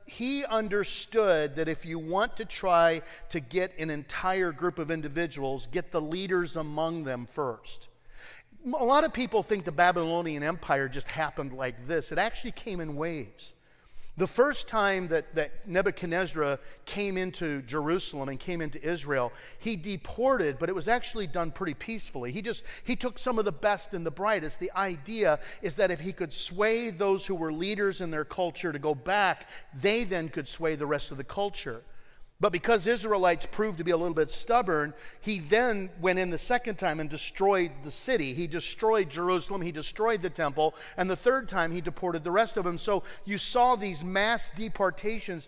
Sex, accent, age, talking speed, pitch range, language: male, American, 50-69, 185 wpm, 160-210 Hz, English